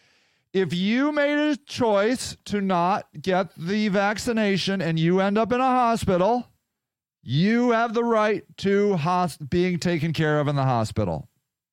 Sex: male